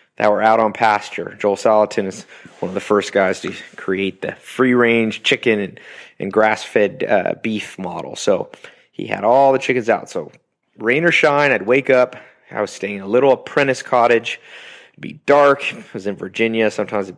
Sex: male